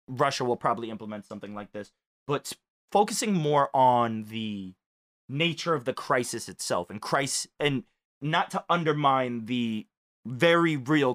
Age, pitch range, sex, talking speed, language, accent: 20-39, 110-145 Hz, male, 140 wpm, English, American